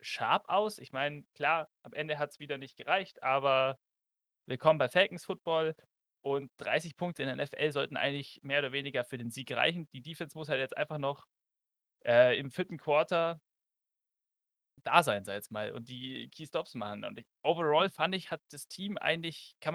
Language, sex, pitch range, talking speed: German, male, 130-165 Hz, 190 wpm